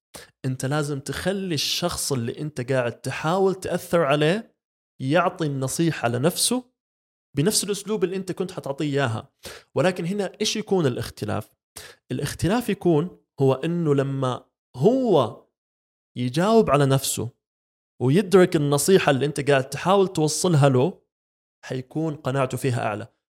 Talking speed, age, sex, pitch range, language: 120 wpm, 20-39, male, 120-165 Hz, Arabic